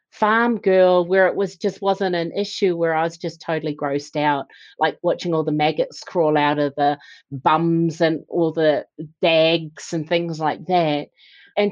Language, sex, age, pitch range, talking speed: English, female, 40-59, 160-200 Hz, 180 wpm